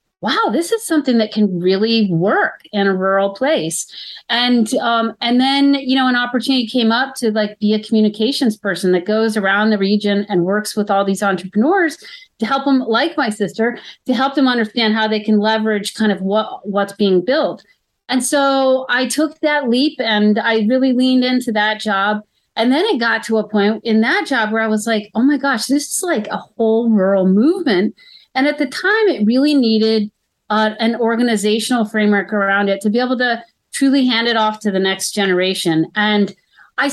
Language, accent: English, American